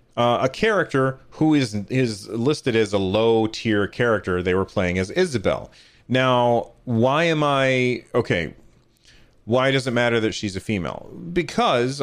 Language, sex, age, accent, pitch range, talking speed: English, male, 30-49, American, 105-135 Hz, 150 wpm